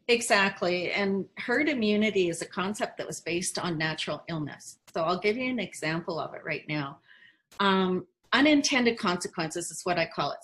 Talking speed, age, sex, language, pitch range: 180 wpm, 40-59, female, English, 180-235 Hz